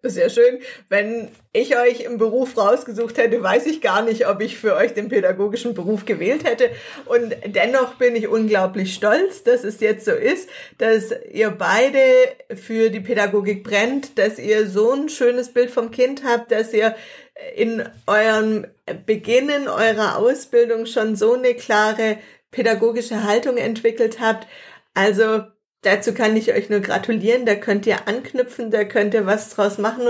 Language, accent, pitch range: German, German, 215-245 Hz